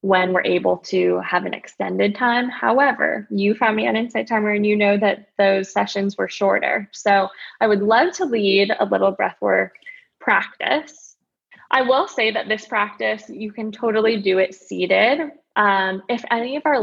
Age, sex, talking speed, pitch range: 20-39, female, 180 wpm, 195-245 Hz